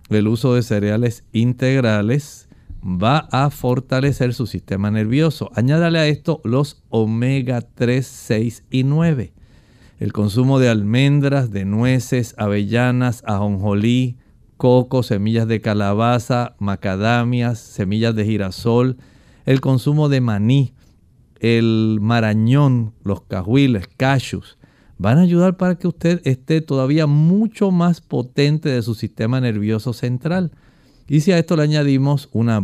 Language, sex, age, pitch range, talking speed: Spanish, male, 50-69, 110-140 Hz, 125 wpm